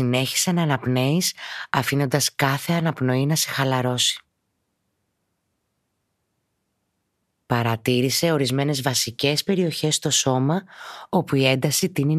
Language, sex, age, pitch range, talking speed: Greek, female, 30-49, 125-155 Hz, 90 wpm